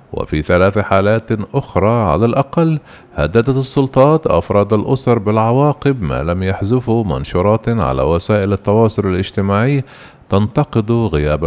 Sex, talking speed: male, 110 wpm